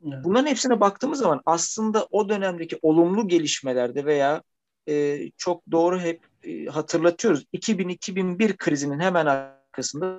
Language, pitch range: English, 150-185 Hz